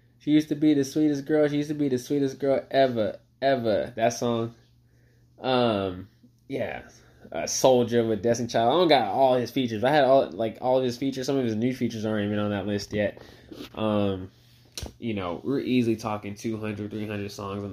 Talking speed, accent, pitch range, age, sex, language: 205 wpm, American, 110-125 Hz, 10-29, male, English